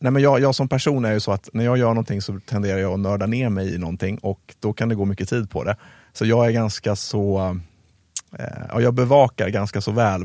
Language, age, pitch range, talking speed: Swedish, 30-49, 95-115 Hz, 250 wpm